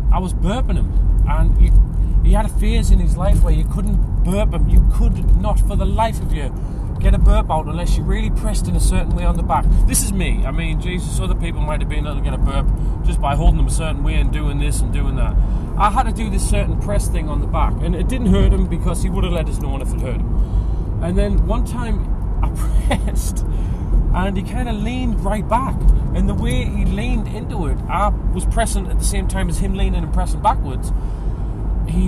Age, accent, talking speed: 30-49, British, 245 wpm